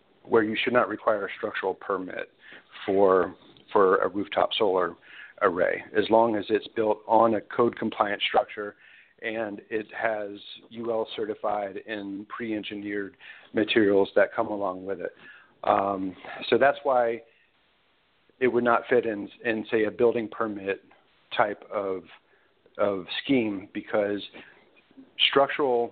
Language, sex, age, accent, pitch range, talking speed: English, male, 40-59, American, 105-125 Hz, 125 wpm